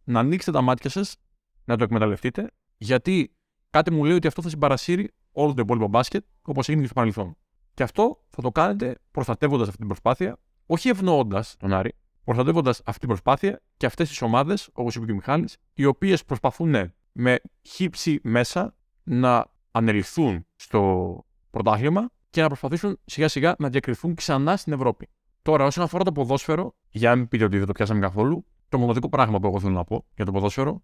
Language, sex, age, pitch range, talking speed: Greek, male, 20-39, 110-150 Hz, 185 wpm